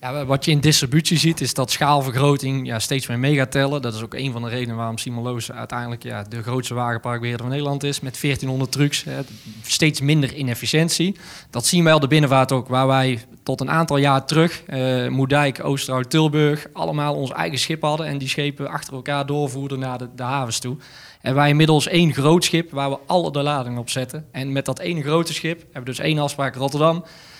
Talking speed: 205 wpm